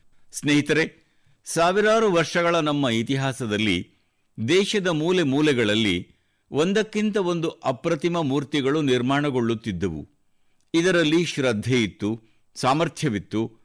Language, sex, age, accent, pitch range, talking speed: Kannada, male, 60-79, native, 125-165 Hz, 70 wpm